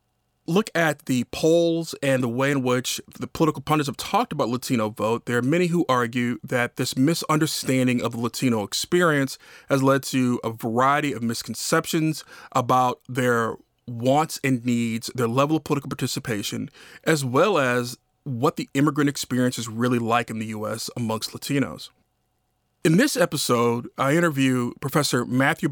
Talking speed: 160 wpm